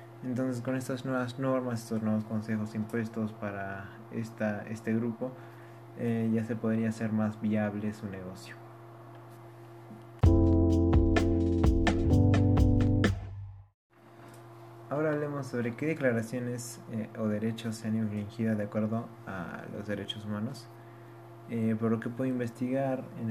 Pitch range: 110-115 Hz